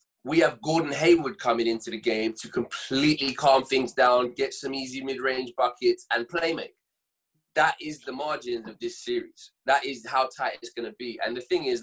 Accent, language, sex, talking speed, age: British, English, male, 200 wpm, 20-39